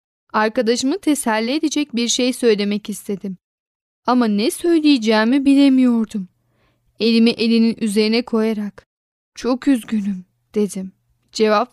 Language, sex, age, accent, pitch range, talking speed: Turkish, female, 10-29, native, 215-290 Hz, 95 wpm